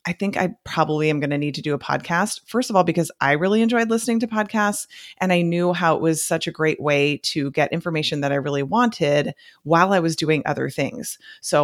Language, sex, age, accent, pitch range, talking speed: English, female, 30-49, American, 145-190 Hz, 235 wpm